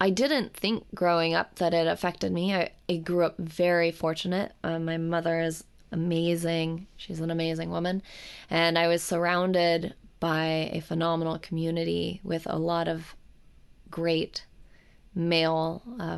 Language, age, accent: English, 20-39, American